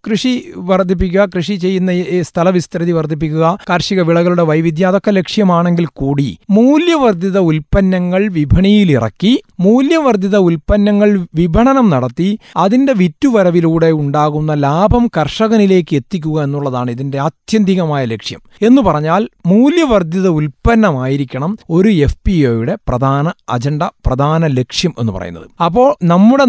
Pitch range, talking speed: 150-200 Hz, 95 wpm